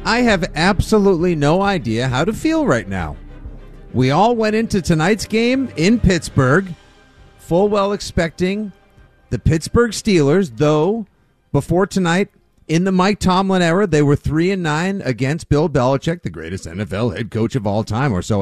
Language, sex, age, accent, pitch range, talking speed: English, male, 40-59, American, 130-205 Hz, 165 wpm